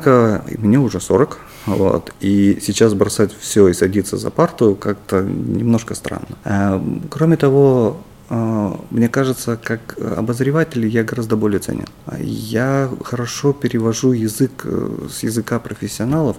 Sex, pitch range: male, 100-120 Hz